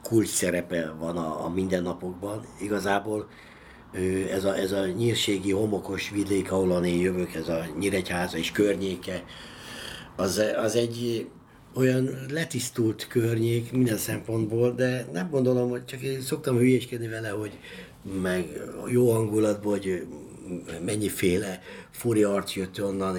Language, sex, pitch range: Hungarian, male, 85-105 Hz